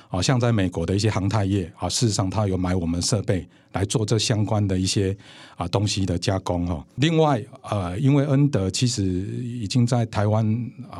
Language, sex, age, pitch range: Chinese, male, 60-79, 95-120 Hz